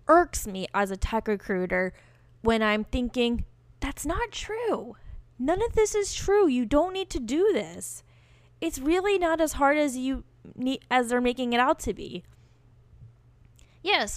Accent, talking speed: American, 160 wpm